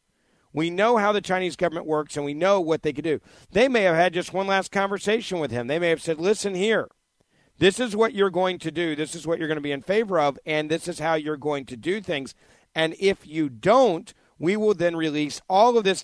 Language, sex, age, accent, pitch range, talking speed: English, male, 50-69, American, 150-195 Hz, 250 wpm